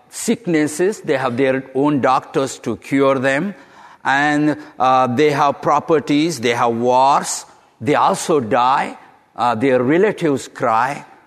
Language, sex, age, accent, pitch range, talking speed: English, male, 60-79, Indian, 110-150 Hz, 130 wpm